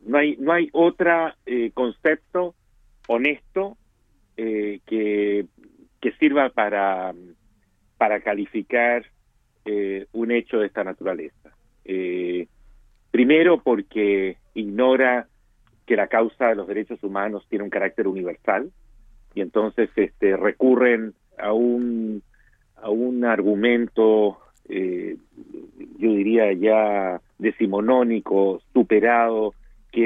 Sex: male